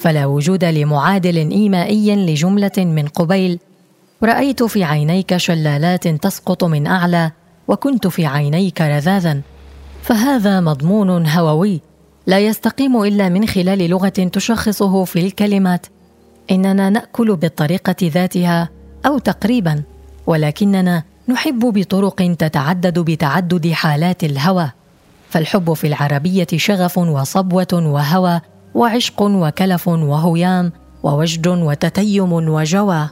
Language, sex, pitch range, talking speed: Arabic, female, 165-195 Hz, 100 wpm